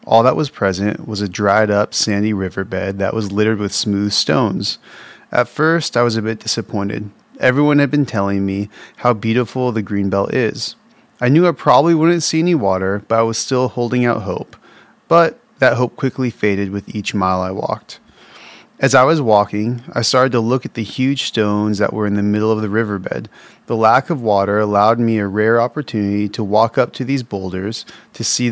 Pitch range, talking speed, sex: 105-125 Hz, 200 wpm, male